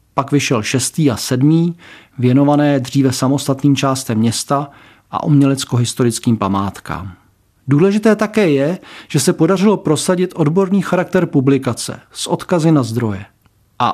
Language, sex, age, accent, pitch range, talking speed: Czech, male, 40-59, native, 130-170 Hz, 125 wpm